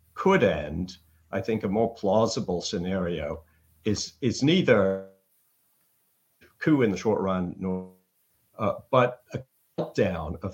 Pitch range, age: 85-110 Hz, 50-69